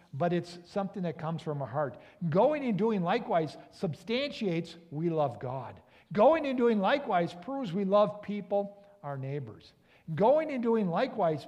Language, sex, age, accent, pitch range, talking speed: English, male, 60-79, American, 145-210 Hz, 155 wpm